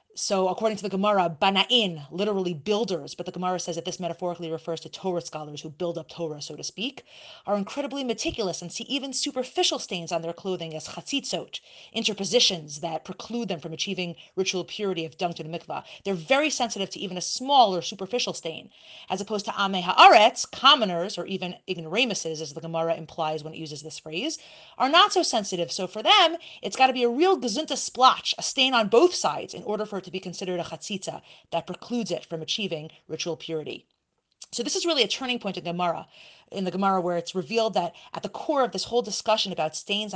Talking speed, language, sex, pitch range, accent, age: 205 wpm, English, female, 170-255 Hz, American, 30-49